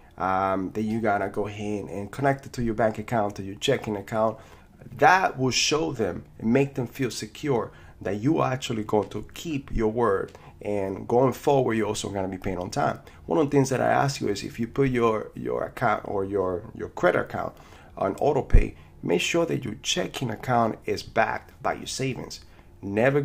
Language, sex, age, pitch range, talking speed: English, male, 30-49, 105-130 Hz, 205 wpm